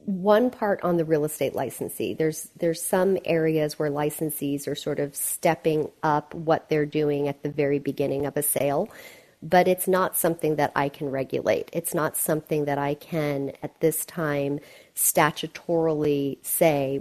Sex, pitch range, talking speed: female, 145-170 Hz, 165 wpm